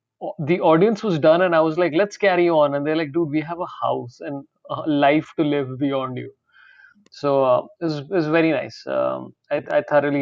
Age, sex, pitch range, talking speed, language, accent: 30-49, male, 140-175 Hz, 225 wpm, English, Indian